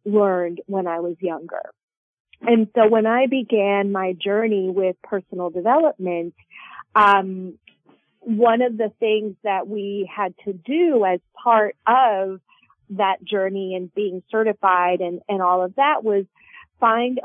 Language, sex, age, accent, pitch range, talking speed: English, female, 30-49, American, 190-250 Hz, 140 wpm